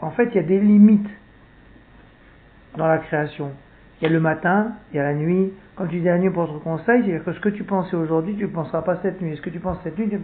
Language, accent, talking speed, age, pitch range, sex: French, French, 295 wpm, 60-79, 180-245 Hz, male